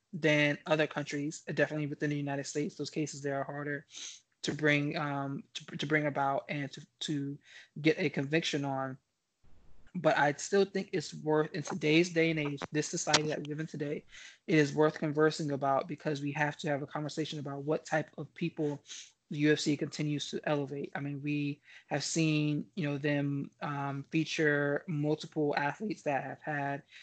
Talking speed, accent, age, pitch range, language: 180 wpm, American, 20-39, 145-160 Hz, English